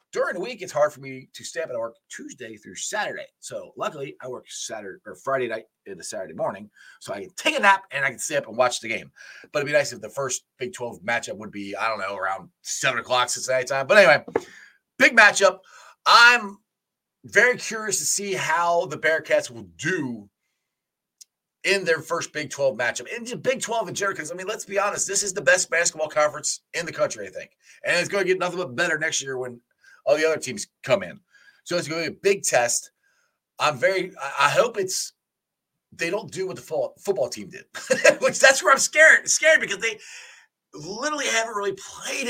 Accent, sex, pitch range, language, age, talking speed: American, male, 155-250 Hz, English, 30-49, 225 wpm